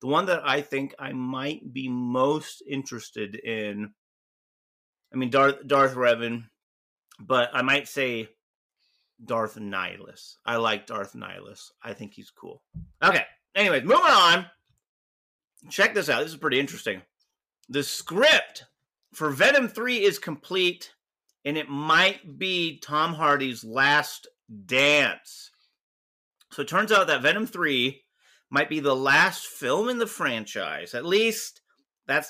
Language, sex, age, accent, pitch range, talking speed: English, male, 30-49, American, 130-175 Hz, 135 wpm